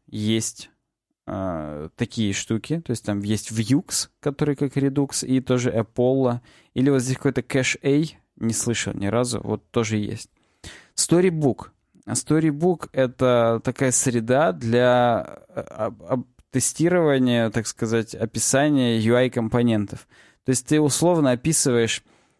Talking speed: 125 wpm